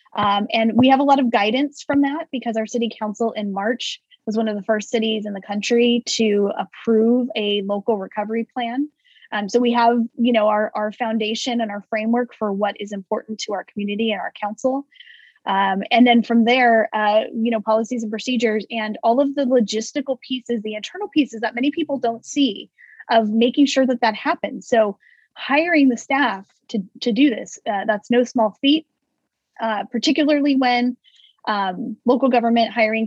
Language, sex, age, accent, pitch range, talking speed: English, female, 10-29, American, 215-260 Hz, 190 wpm